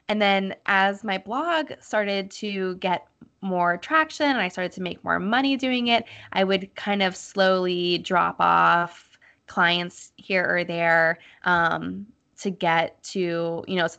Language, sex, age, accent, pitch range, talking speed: English, female, 10-29, American, 175-215 Hz, 160 wpm